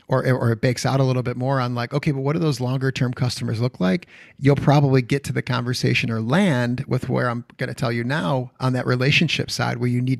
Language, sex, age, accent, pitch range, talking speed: English, male, 30-49, American, 125-140 Hz, 255 wpm